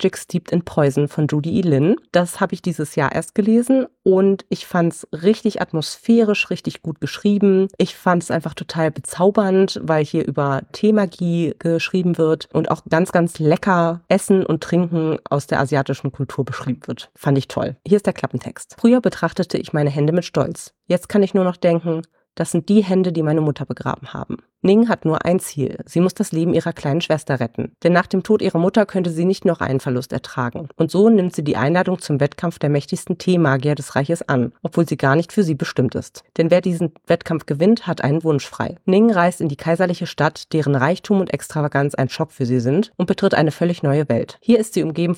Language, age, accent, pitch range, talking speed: German, 30-49, German, 150-185 Hz, 215 wpm